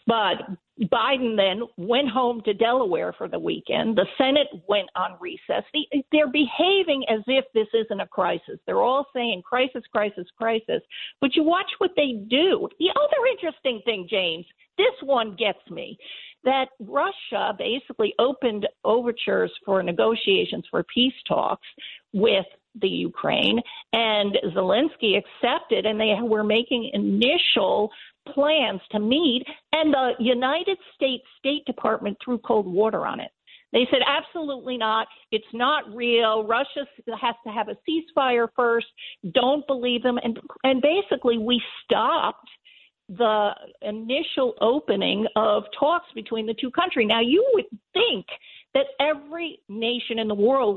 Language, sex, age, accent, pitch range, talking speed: English, female, 50-69, American, 220-285 Hz, 140 wpm